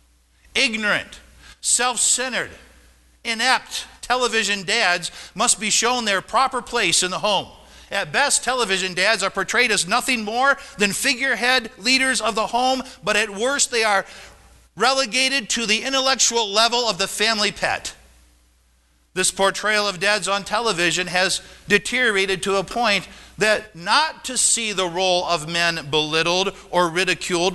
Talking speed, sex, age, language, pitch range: 140 wpm, male, 50-69, English, 150-215 Hz